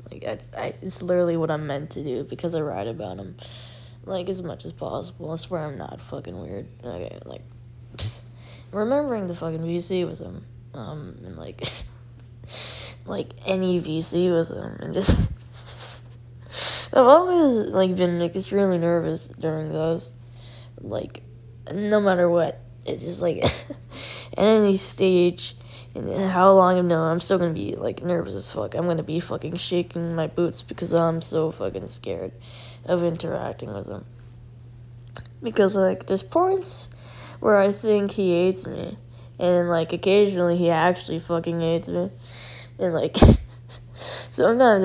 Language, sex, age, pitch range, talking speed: English, female, 10-29, 120-175 Hz, 155 wpm